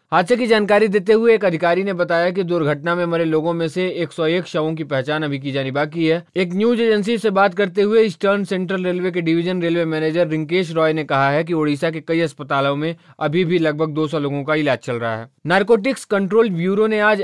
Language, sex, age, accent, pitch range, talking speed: Hindi, male, 20-39, native, 155-185 Hz, 225 wpm